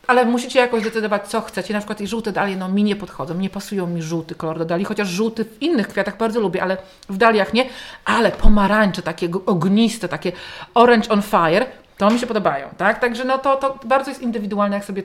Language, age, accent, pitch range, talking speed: Polish, 40-59, native, 190-235 Hz, 220 wpm